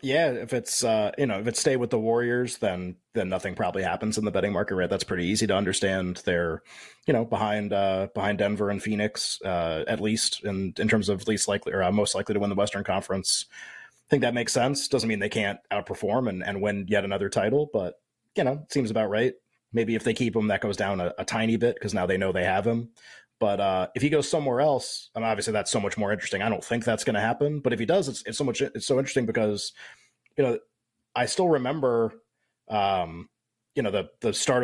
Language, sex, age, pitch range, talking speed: English, male, 20-39, 100-120 Hz, 240 wpm